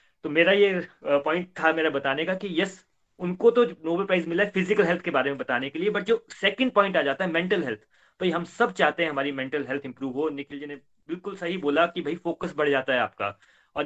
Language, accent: Hindi, native